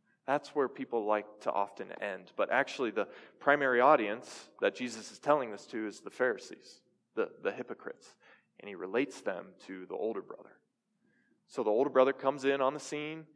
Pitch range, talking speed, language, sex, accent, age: 130-205 Hz, 185 wpm, English, male, American, 20-39